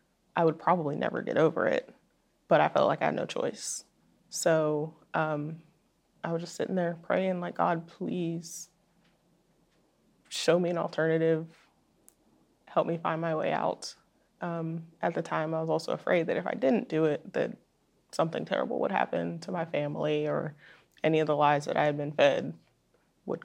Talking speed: 175 wpm